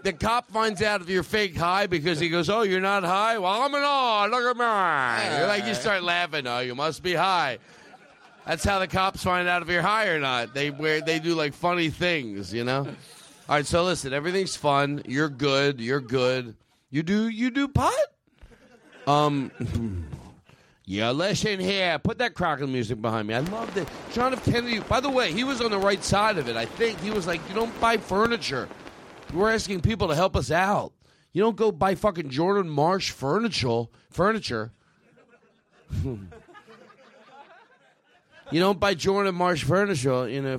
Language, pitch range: English, 140-200 Hz